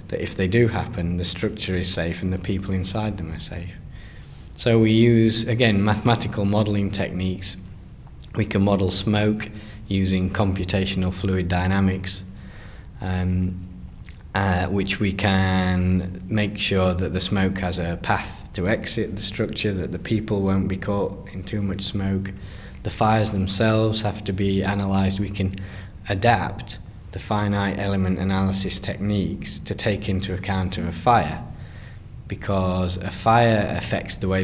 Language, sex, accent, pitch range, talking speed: English, male, British, 90-100 Hz, 150 wpm